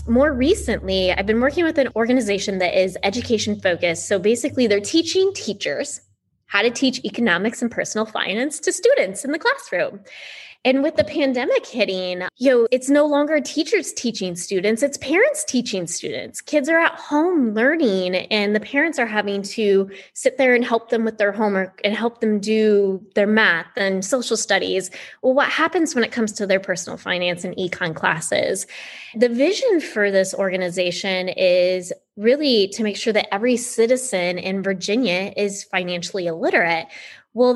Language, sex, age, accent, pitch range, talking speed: English, female, 20-39, American, 195-260 Hz, 165 wpm